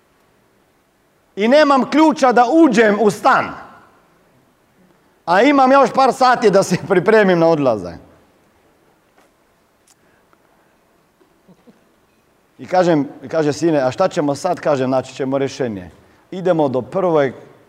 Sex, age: male, 40-59